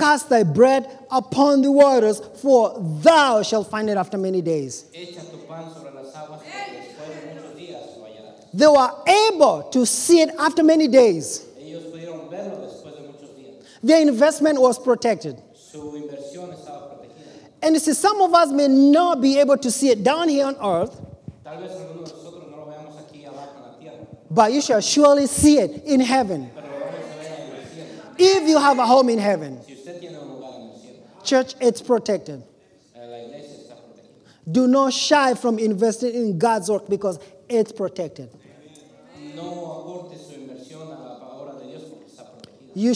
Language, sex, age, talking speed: Spanish, male, 30-49, 105 wpm